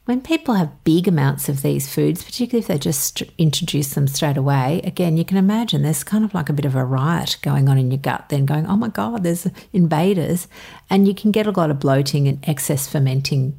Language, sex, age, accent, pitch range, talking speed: English, female, 50-69, Australian, 140-175 Hz, 230 wpm